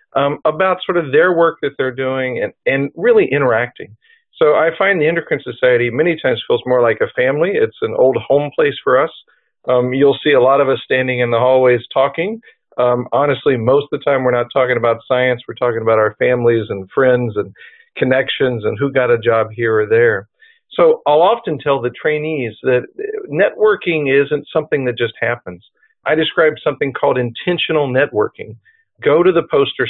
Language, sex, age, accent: English, male, 50-69, American